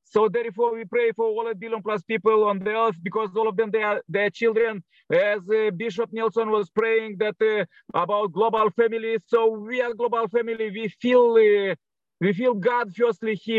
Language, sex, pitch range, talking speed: English, male, 210-225 Hz, 200 wpm